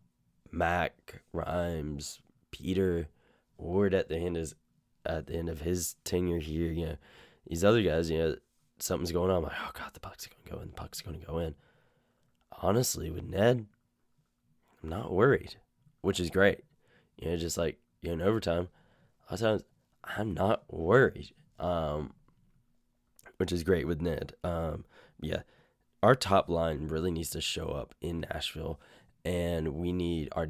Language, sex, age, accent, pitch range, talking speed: English, male, 10-29, American, 80-90 Hz, 165 wpm